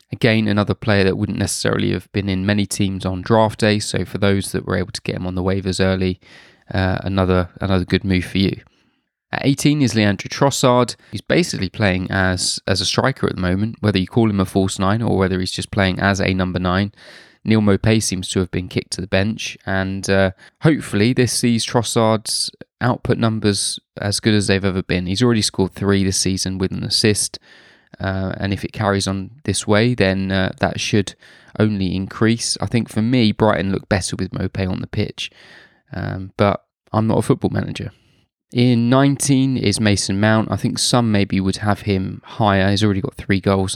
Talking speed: 205 wpm